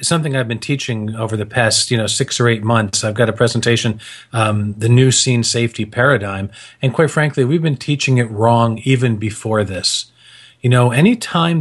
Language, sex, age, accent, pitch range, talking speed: English, male, 40-59, American, 110-140 Hz, 195 wpm